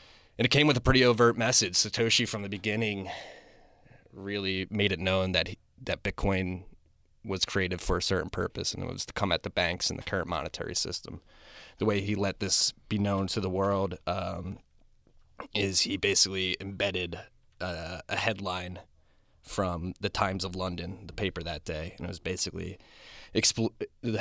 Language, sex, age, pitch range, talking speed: English, male, 20-39, 90-105 Hz, 175 wpm